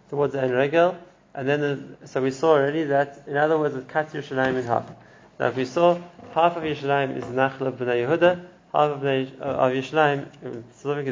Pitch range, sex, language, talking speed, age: 130-155 Hz, male, English, 205 wpm, 20-39